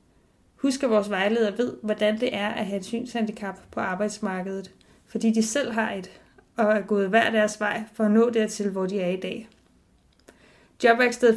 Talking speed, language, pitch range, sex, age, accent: 185 wpm, Danish, 220-250 Hz, female, 20-39, native